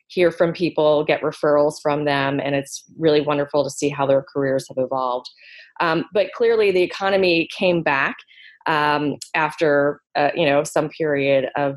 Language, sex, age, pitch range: English, female, 20-39, 145-175 Hz